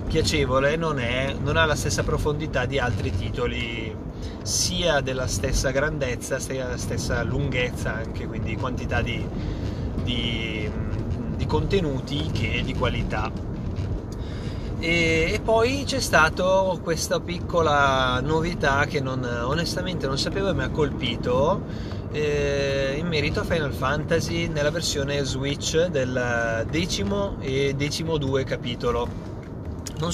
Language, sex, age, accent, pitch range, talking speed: Italian, male, 30-49, native, 100-140 Hz, 125 wpm